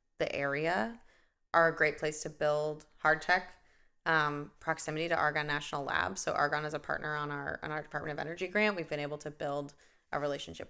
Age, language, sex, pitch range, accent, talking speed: 20-39, English, female, 150-200 Hz, American, 200 wpm